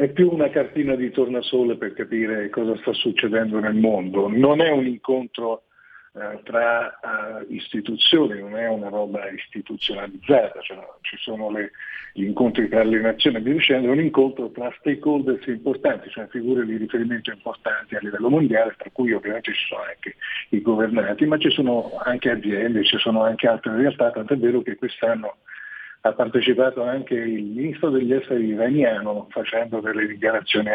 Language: Italian